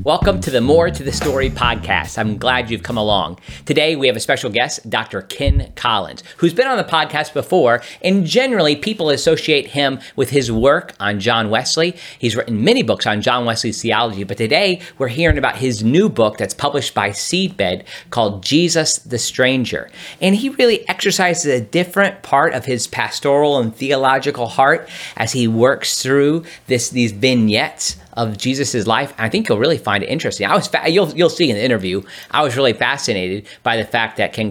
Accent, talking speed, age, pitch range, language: American, 190 wpm, 40-59, 110-150 Hz, English